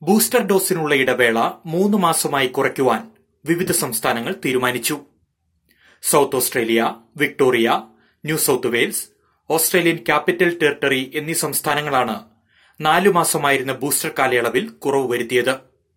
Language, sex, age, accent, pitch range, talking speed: Malayalam, male, 30-49, native, 130-175 Hz, 95 wpm